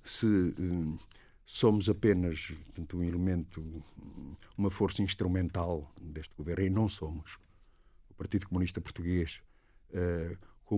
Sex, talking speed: male, 100 wpm